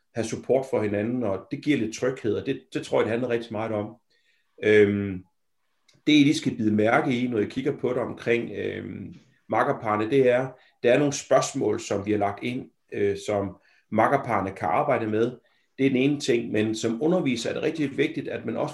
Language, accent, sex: Danish, native, male